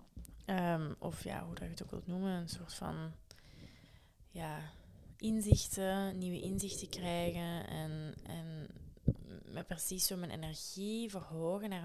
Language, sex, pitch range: Dutch, female, 170-200 Hz